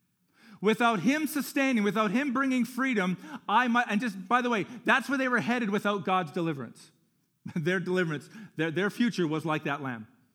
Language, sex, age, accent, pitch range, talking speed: English, male, 40-59, American, 165-230 Hz, 180 wpm